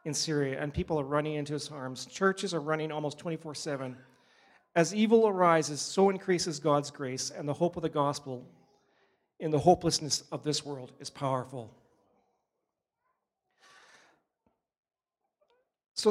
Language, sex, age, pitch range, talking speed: English, male, 40-59, 145-170 Hz, 135 wpm